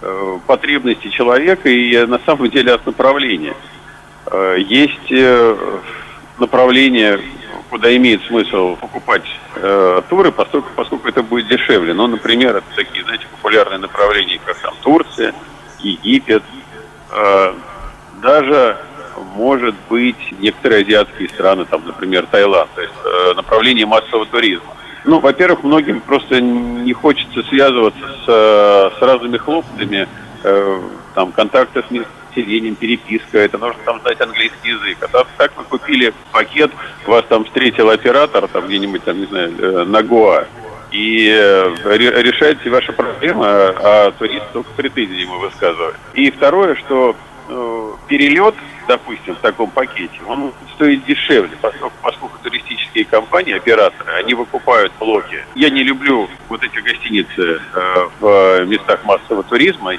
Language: Russian